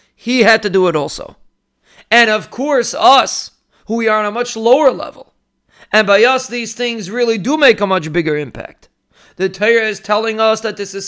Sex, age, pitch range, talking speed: male, 30-49, 195-235 Hz, 205 wpm